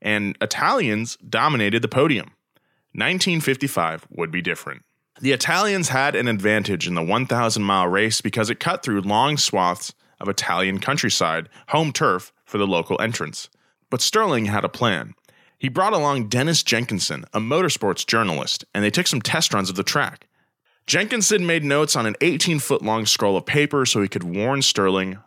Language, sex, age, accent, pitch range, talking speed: English, male, 20-39, American, 100-140 Hz, 165 wpm